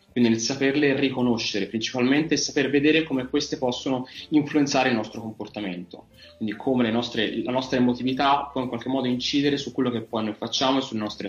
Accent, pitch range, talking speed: native, 110-135 Hz, 185 wpm